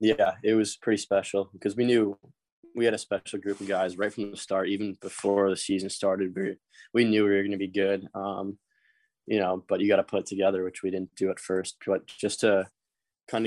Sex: male